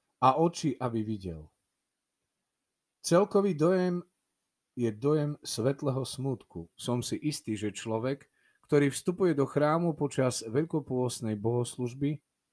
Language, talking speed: Slovak, 105 wpm